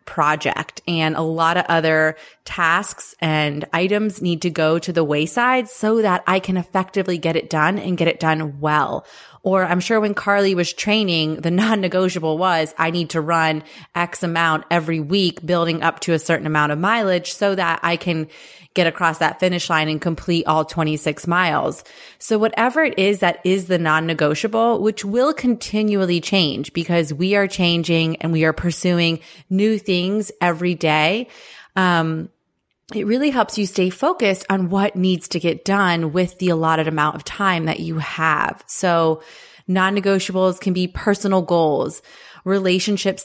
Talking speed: 170 wpm